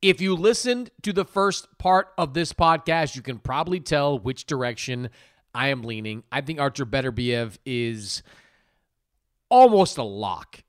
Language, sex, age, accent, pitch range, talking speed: English, male, 30-49, American, 115-160 Hz, 150 wpm